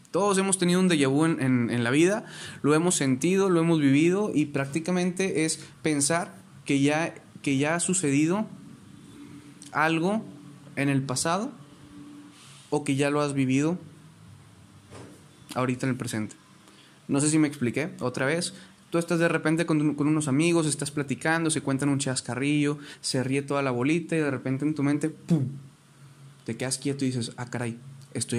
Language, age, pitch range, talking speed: Spanish, 20-39, 130-160 Hz, 175 wpm